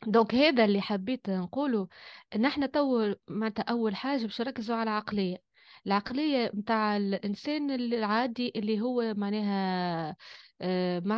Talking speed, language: 125 wpm, Arabic